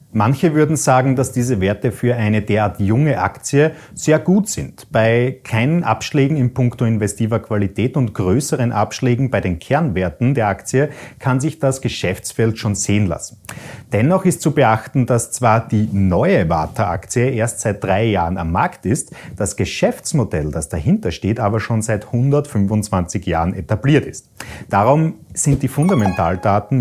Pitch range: 100-135 Hz